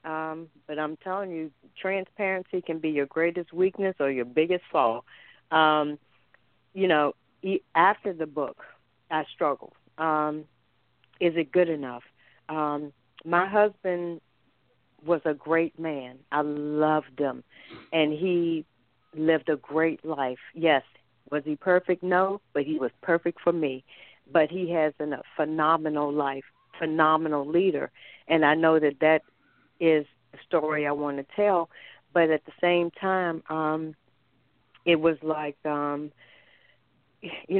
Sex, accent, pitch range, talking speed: female, American, 150-175 Hz, 135 wpm